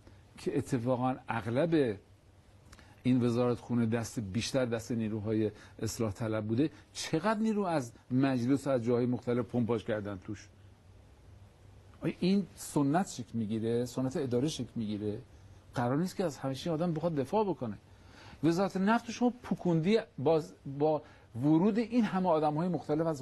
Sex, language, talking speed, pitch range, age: male, Persian, 130 wpm, 105-155 Hz, 50-69